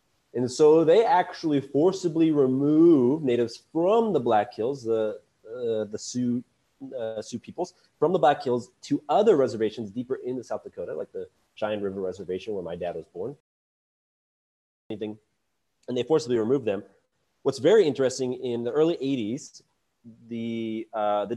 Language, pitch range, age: English, 115-165 Hz, 30-49